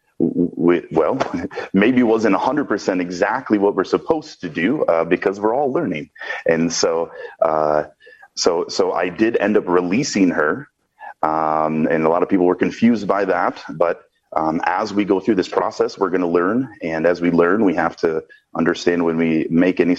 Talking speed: 190 wpm